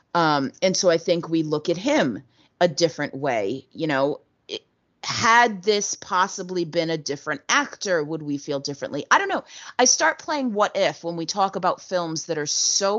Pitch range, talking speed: 145-205 Hz, 190 wpm